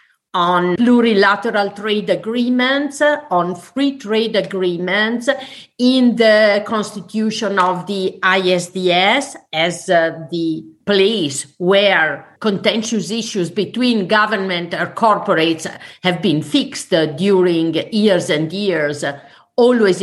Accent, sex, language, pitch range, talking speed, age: Italian, female, English, 180-245 Hz, 95 wpm, 50-69